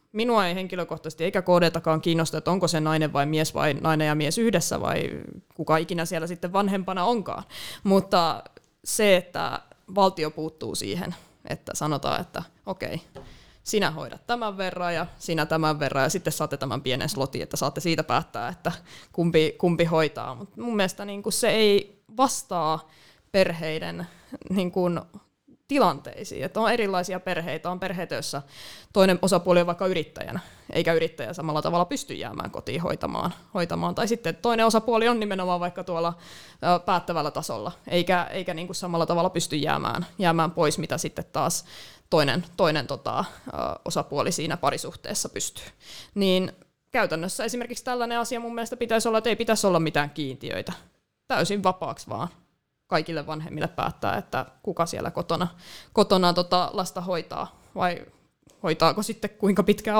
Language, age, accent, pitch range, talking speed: Finnish, 20-39, native, 160-200 Hz, 150 wpm